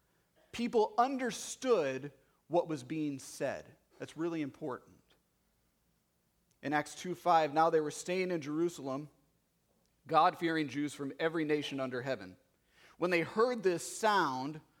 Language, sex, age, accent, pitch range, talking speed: English, male, 40-59, American, 140-185 Hz, 120 wpm